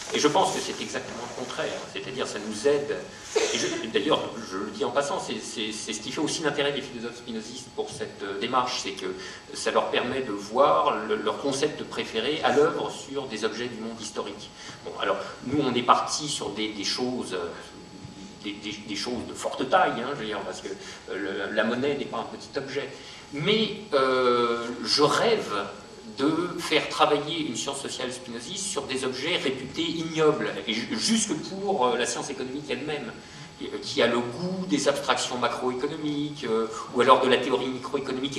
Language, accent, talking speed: French, French, 190 wpm